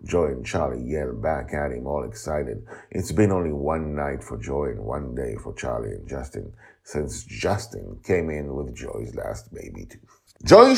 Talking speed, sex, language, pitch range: 185 wpm, male, English, 85-130 Hz